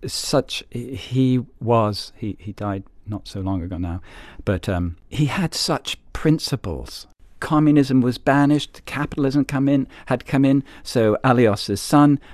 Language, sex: English, male